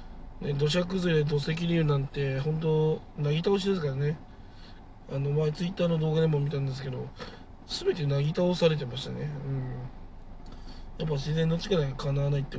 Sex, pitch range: male, 130-160 Hz